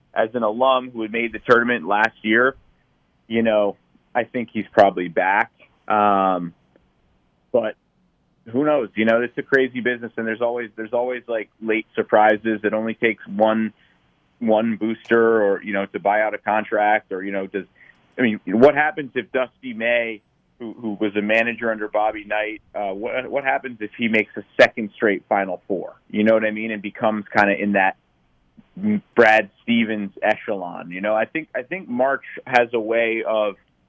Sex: male